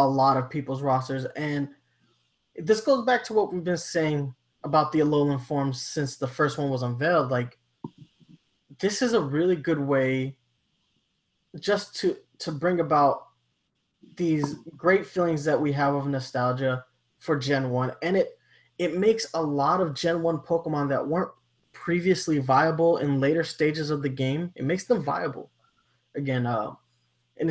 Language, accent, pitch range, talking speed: English, American, 130-170 Hz, 160 wpm